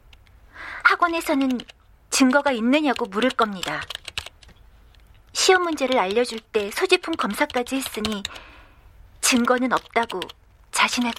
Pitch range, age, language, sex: 210-275 Hz, 40-59, Korean, female